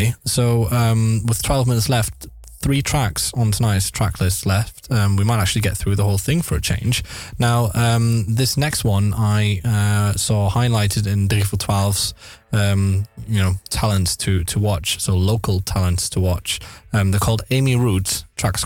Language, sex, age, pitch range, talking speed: Dutch, male, 10-29, 95-110 Hz, 175 wpm